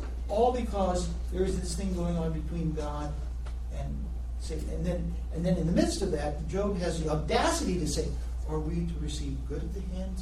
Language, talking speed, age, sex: English, 205 wpm, 60-79, male